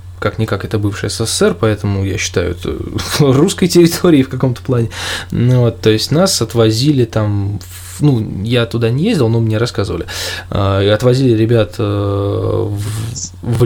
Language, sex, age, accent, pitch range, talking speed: Russian, male, 20-39, native, 105-130 Hz, 140 wpm